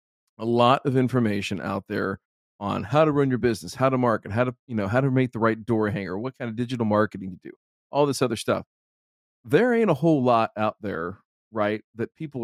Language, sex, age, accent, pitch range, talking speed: English, male, 40-59, American, 100-135 Hz, 225 wpm